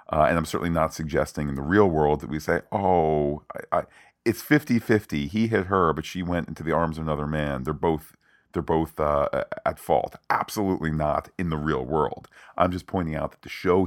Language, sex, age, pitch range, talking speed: English, male, 40-59, 75-90 Hz, 220 wpm